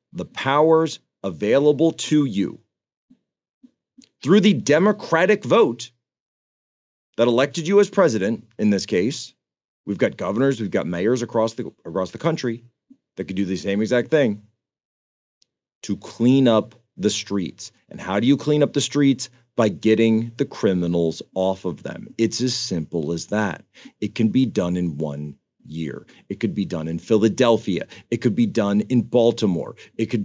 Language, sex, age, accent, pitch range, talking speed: English, male, 40-59, American, 105-145 Hz, 160 wpm